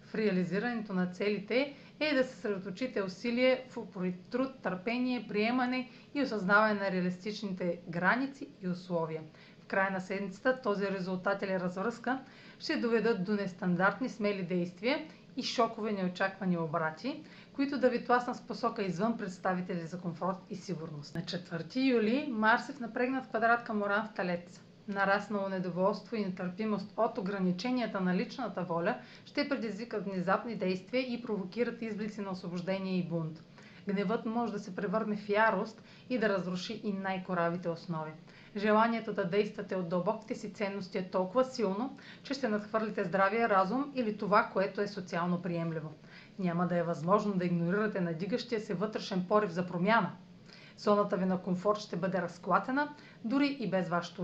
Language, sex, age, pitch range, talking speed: Bulgarian, female, 40-59, 185-230 Hz, 155 wpm